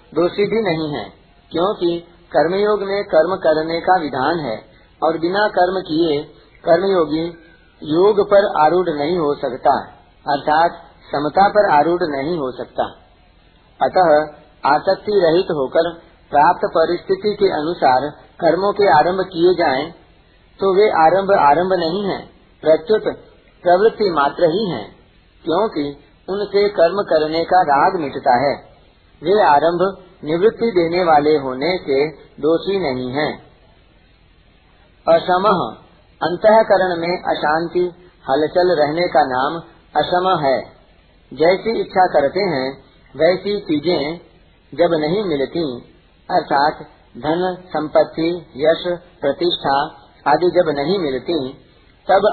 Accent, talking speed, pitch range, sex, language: native, 115 wpm, 150-185 Hz, male, Hindi